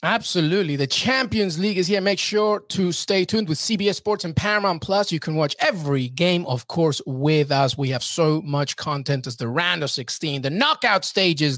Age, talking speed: 30-49, 200 wpm